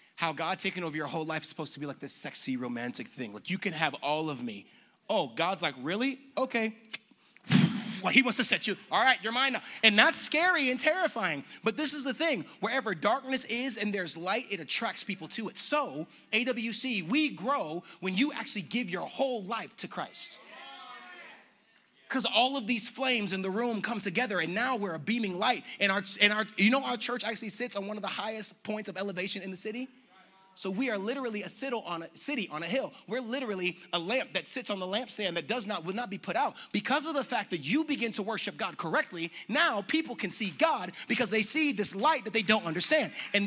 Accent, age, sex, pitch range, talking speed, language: American, 30-49, male, 190-255 Hz, 225 wpm, English